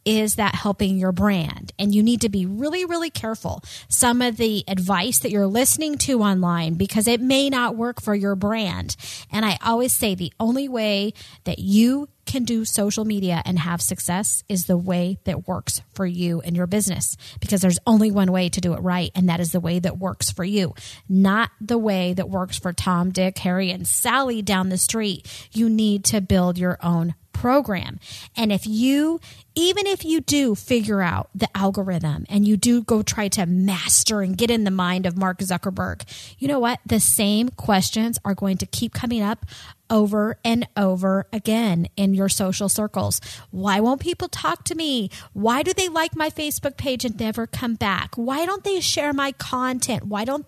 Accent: American